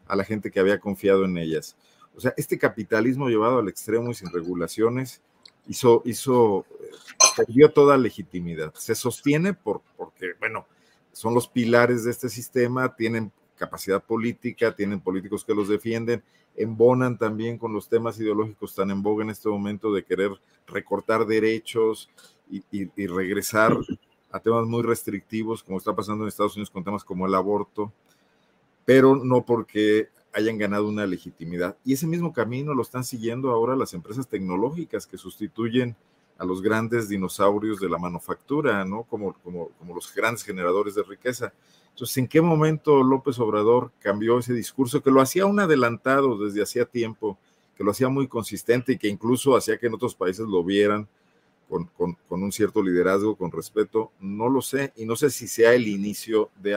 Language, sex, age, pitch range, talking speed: Spanish, male, 50-69, 100-125 Hz, 175 wpm